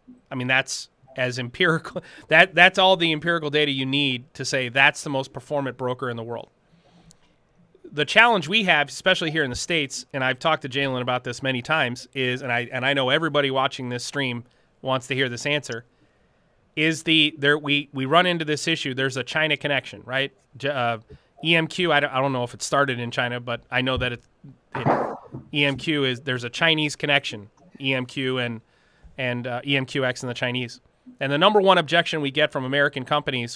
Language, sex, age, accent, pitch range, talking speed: English, male, 30-49, American, 125-155 Hz, 200 wpm